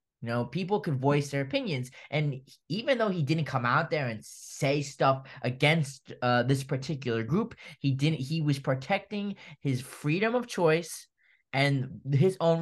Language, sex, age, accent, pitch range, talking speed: English, male, 10-29, American, 130-165 Hz, 165 wpm